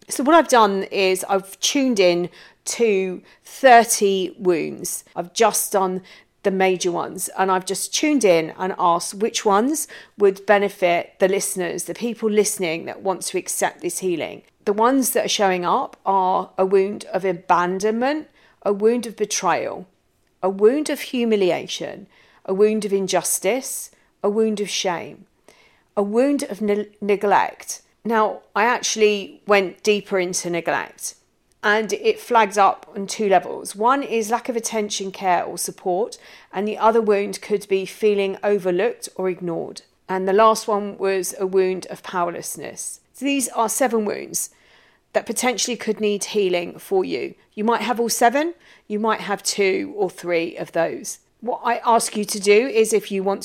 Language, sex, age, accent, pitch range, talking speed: English, female, 40-59, British, 190-225 Hz, 165 wpm